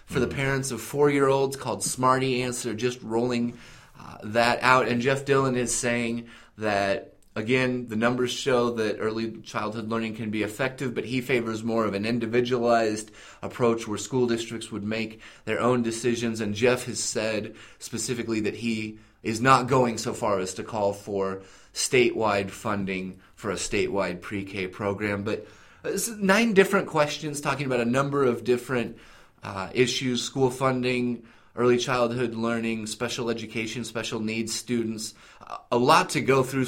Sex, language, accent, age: male, English, American, 30-49